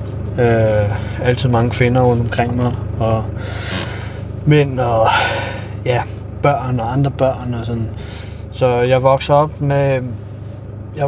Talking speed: 110 wpm